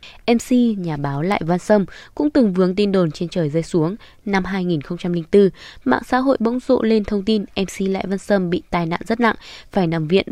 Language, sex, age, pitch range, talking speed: Vietnamese, female, 10-29, 175-220 Hz, 215 wpm